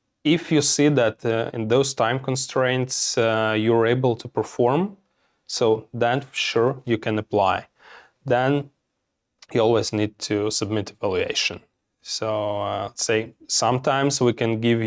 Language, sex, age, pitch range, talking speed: English, male, 20-39, 110-125 Hz, 135 wpm